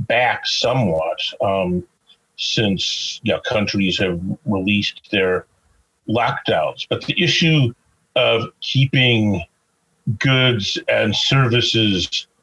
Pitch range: 95-125 Hz